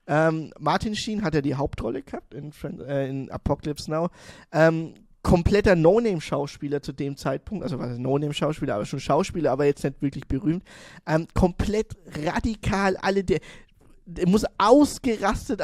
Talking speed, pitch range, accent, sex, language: 150 wpm, 155-195 Hz, German, male, German